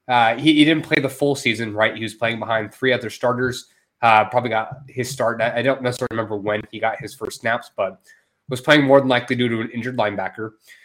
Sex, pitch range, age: male, 110-140 Hz, 20-39